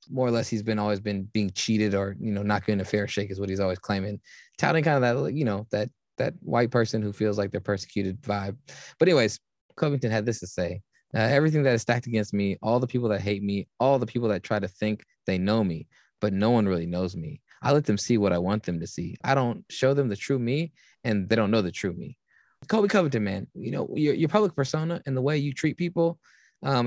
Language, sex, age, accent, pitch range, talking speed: English, male, 20-39, American, 100-130 Hz, 255 wpm